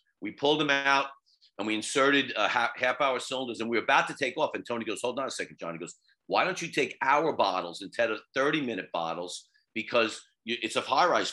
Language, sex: English, male